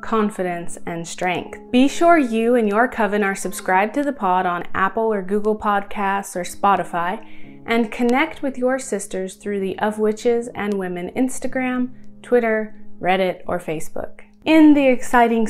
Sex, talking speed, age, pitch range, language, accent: female, 155 wpm, 20-39, 190-240 Hz, English, American